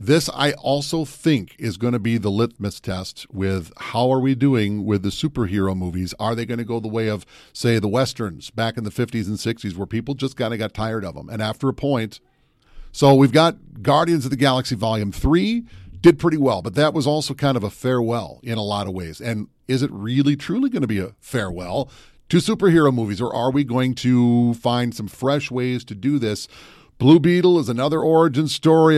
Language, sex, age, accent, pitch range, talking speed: English, male, 40-59, American, 110-145 Hz, 220 wpm